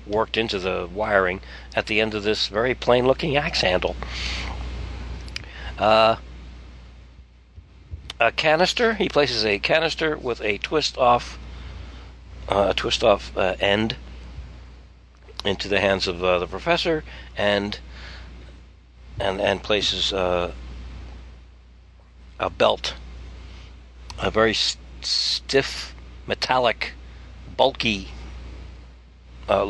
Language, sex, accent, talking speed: English, male, American, 100 wpm